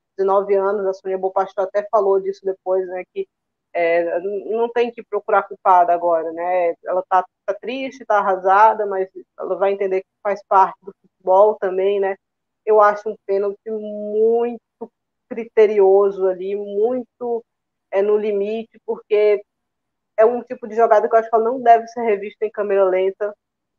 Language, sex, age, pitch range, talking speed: Portuguese, female, 20-39, 195-225 Hz, 165 wpm